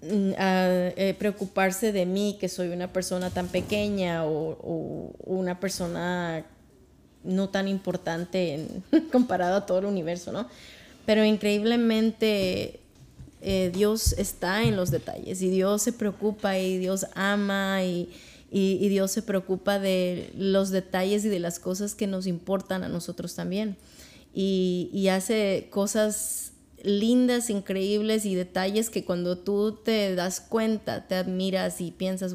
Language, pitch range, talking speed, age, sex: Spanish, 185-205 Hz, 145 wpm, 20-39, female